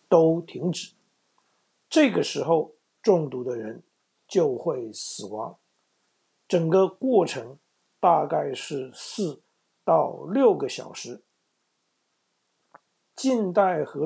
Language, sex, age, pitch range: Chinese, male, 50-69, 150-210 Hz